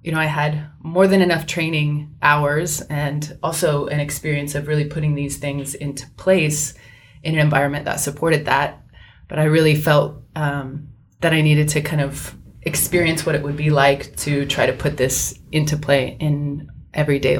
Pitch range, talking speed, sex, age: 145-160 Hz, 180 wpm, female, 30-49